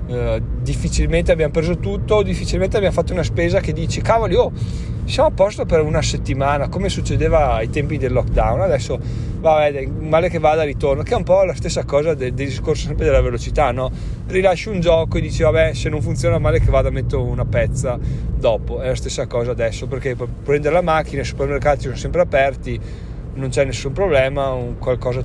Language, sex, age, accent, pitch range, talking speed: Italian, male, 30-49, native, 115-150 Hz, 195 wpm